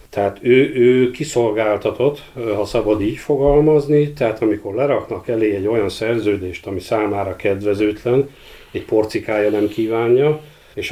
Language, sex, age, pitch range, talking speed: Hungarian, male, 50-69, 105-120 Hz, 125 wpm